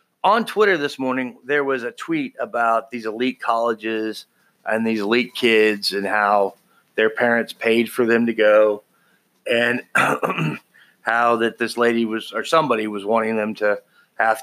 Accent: American